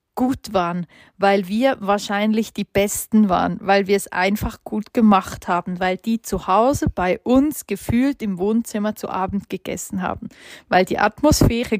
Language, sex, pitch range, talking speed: German, female, 195-240 Hz, 160 wpm